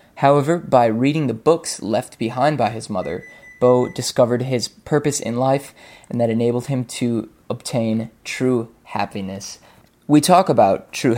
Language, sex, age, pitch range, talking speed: English, male, 20-39, 120-140 Hz, 150 wpm